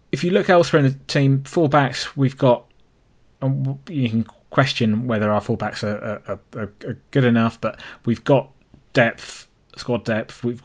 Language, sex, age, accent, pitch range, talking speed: English, male, 20-39, British, 110-135 Hz, 165 wpm